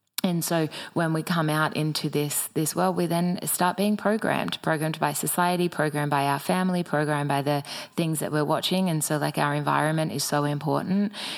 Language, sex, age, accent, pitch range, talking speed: English, female, 20-39, Australian, 150-175 Hz, 195 wpm